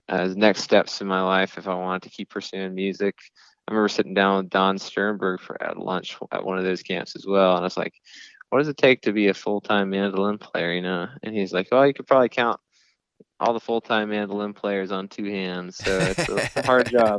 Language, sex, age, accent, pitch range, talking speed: English, male, 20-39, American, 95-105 Hz, 250 wpm